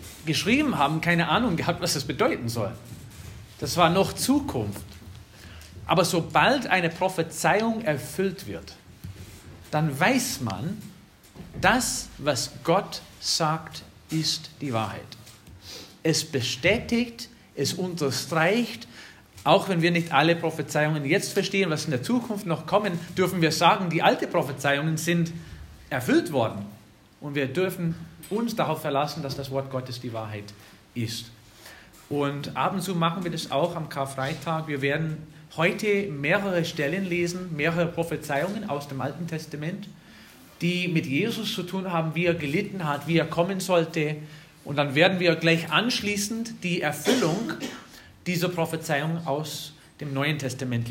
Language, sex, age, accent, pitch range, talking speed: German, male, 40-59, German, 140-175 Hz, 140 wpm